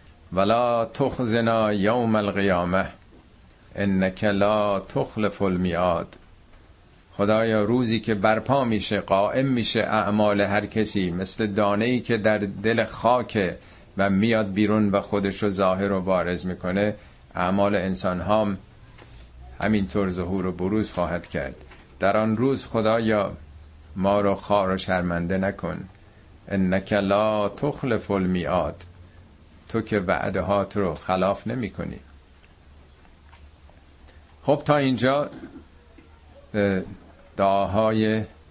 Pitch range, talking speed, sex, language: 90-110 Hz, 110 wpm, male, Persian